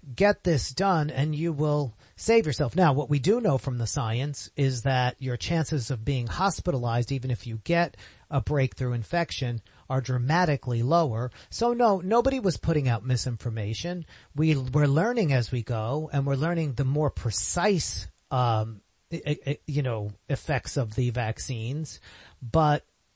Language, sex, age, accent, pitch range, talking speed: English, male, 40-59, American, 125-160 Hz, 155 wpm